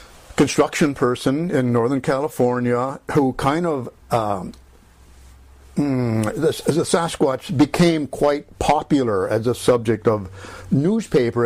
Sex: male